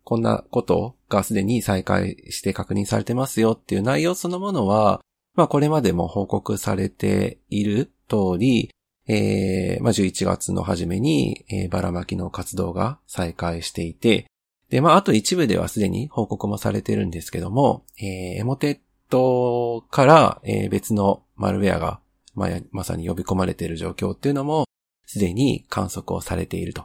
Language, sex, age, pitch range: Japanese, male, 40-59, 95-120 Hz